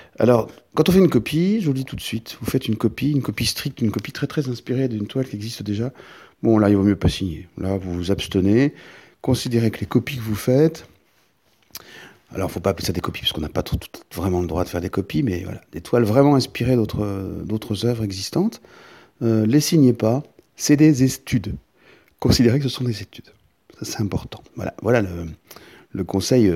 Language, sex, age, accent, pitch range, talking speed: French, male, 40-59, French, 95-130 Hz, 220 wpm